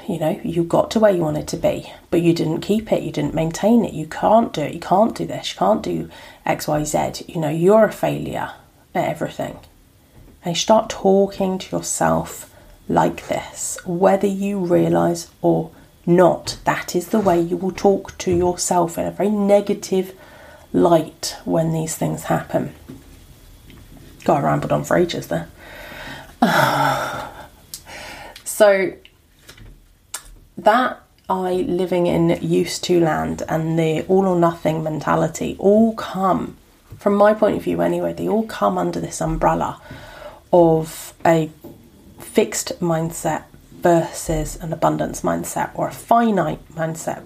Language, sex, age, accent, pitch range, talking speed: English, female, 30-49, British, 160-200 Hz, 150 wpm